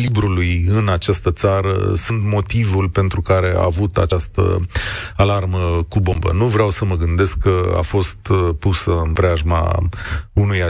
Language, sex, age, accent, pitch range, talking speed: Romanian, male, 30-49, native, 90-110 Hz, 140 wpm